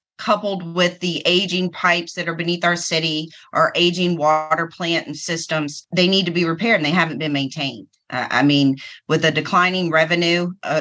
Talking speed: 190 wpm